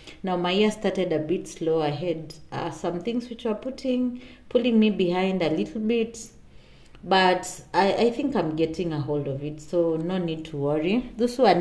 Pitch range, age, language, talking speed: 155-200 Hz, 30-49, English, 200 wpm